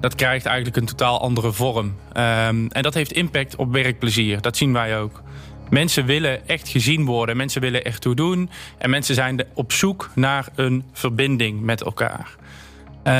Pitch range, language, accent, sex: 120-140 Hz, Dutch, Dutch, male